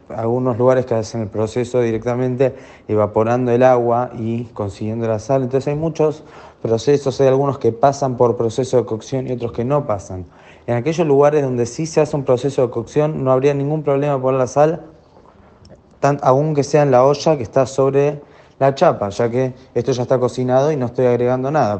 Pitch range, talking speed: 115-135 Hz, 200 wpm